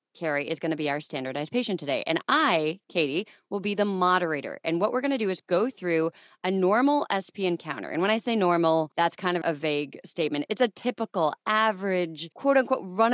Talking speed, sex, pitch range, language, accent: 215 wpm, female, 155-215 Hz, English, American